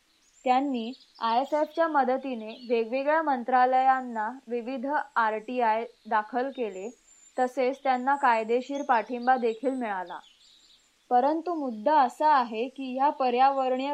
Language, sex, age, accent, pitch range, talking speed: Marathi, female, 20-39, native, 240-280 Hz, 100 wpm